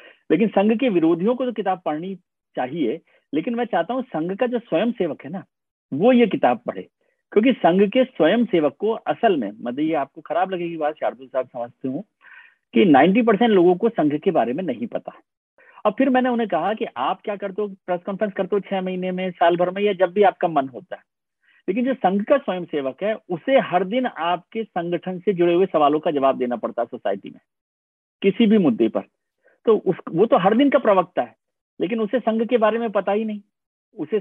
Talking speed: 130 wpm